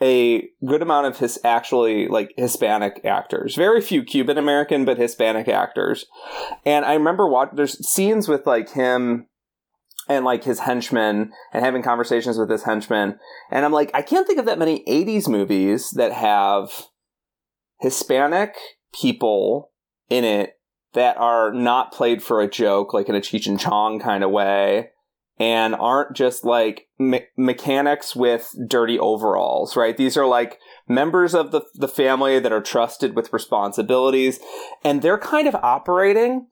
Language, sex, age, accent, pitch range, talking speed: English, male, 30-49, American, 115-150 Hz, 155 wpm